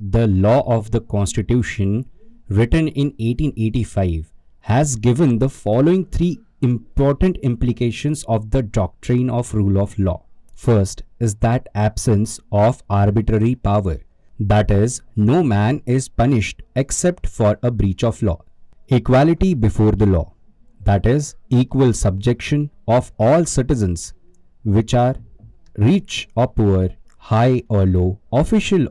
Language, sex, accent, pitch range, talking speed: English, male, Indian, 100-130 Hz, 125 wpm